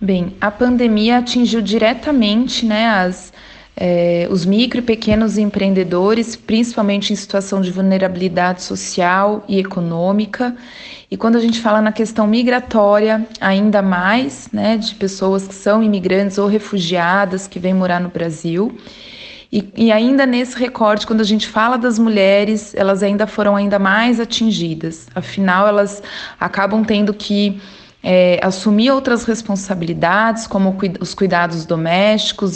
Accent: Brazilian